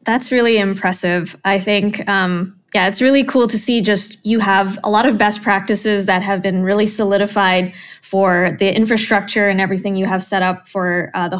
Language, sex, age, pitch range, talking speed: English, female, 20-39, 195-225 Hz, 195 wpm